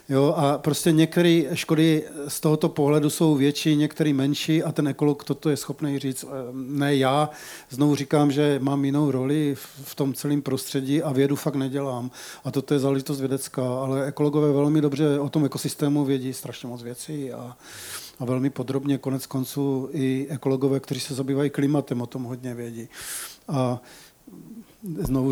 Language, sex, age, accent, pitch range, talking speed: Czech, male, 40-59, native, 135-150 Hz, 160 wpm